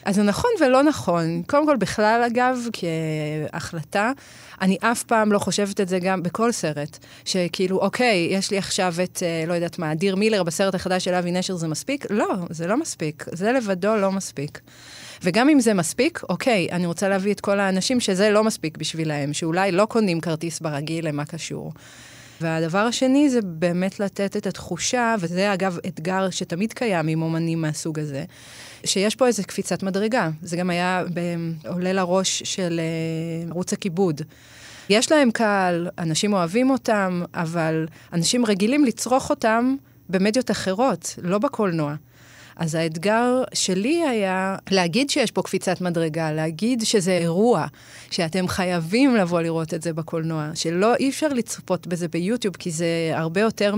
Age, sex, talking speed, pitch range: 30-49, female, 155 wpm, 165-215 Hz